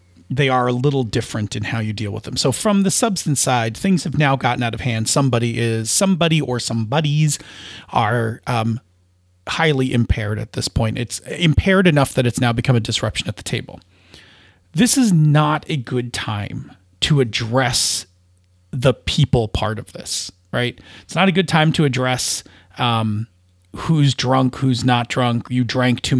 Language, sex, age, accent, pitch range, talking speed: English, male, 40-59, American, 115-150 Hz, 180 wpm